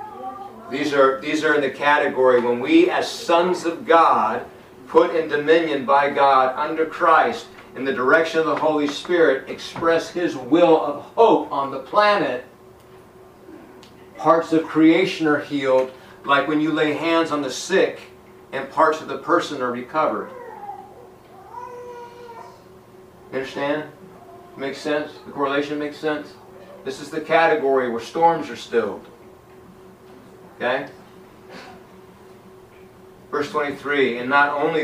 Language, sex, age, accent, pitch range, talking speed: English, male, 50-69, American, 130-165 Hz, 135 wpm